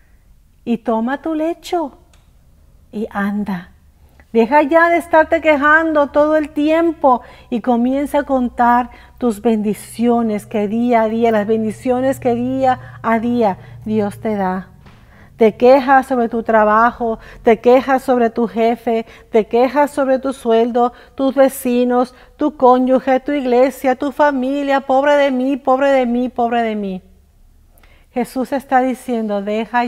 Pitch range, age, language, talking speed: 210-270 Hz, 50-69, Spanish, 140 wpm